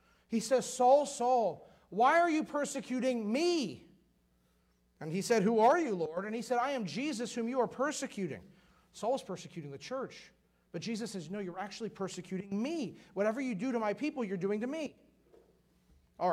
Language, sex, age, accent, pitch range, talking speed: English, male, 40-59, American, 170-235 Hz, 185 wpm